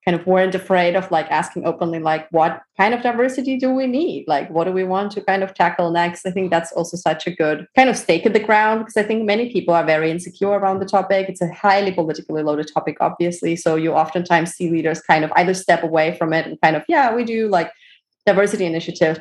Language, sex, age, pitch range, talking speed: English, female, 30-49, 170-210 Hz, 245 wpm